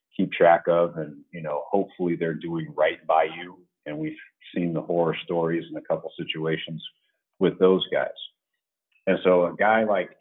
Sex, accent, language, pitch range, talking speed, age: male, American, English, 80-95 Hz, 170 wpm, 40-59